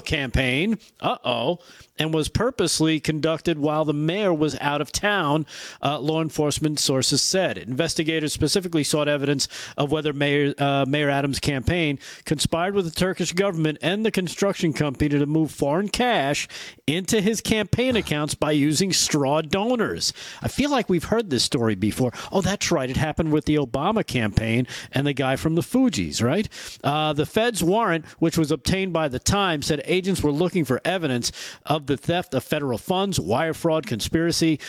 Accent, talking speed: American, 175 wpm